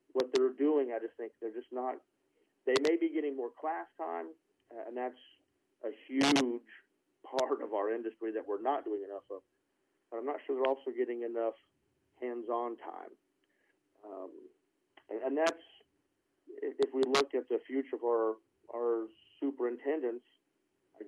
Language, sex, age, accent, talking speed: English, male, 40-59, American, 160 wpm